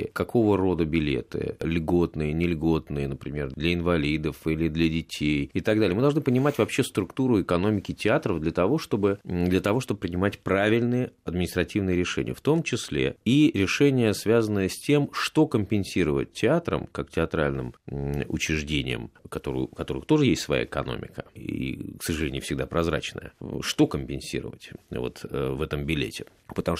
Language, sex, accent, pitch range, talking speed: Russian, male, native, 75-100 Hz, 145 wpm